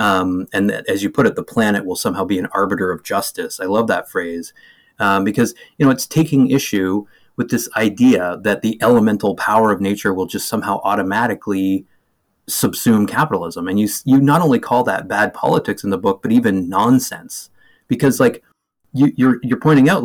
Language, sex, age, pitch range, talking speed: English, male, 30-49, 100-140 Hz, 190 wpm